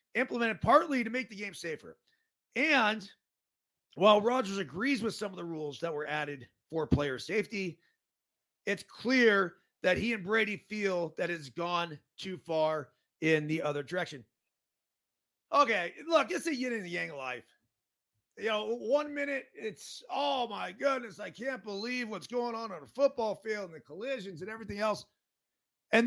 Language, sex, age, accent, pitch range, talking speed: English, male, 30-49, American, 180-250 Hz, 165 wpm